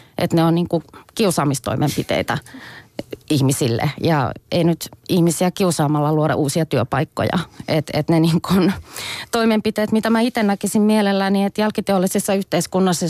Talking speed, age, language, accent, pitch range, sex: 125 wpm, 30-49, Finnish, native, 150-185 Hz, female